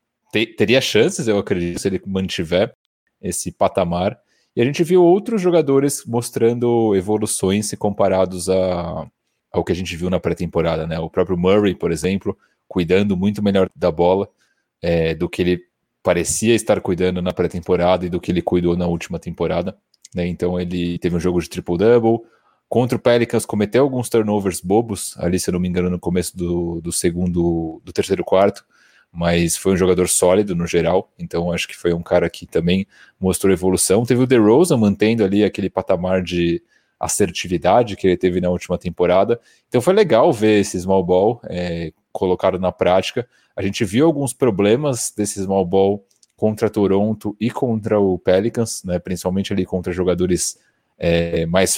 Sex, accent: male, Brazilian